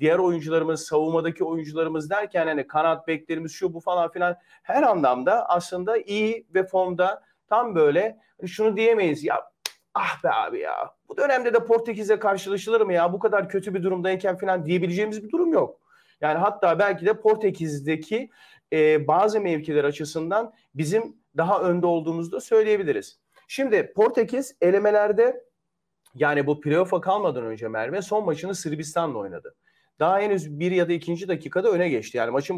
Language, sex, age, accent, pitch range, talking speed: Turkish, male, 40-59, native, 160-220 Hz, 155 wpm